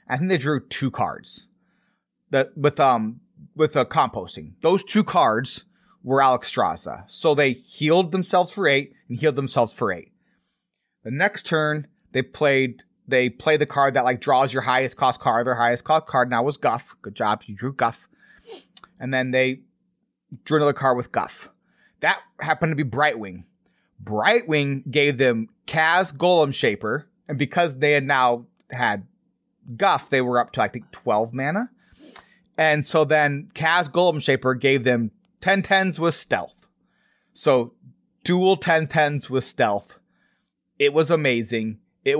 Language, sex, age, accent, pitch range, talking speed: English, male, 30-49, American, 130-165 Hz, 160 wpm